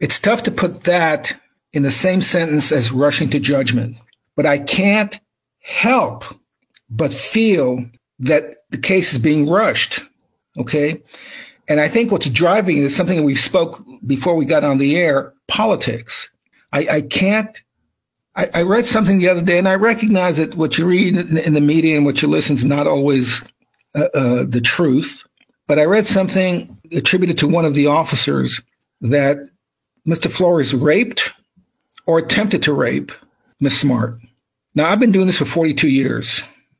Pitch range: 135-185 Hz